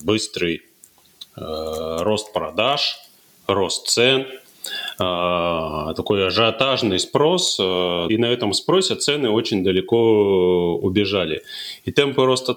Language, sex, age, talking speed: Russian, male, 30-49, 105 wpm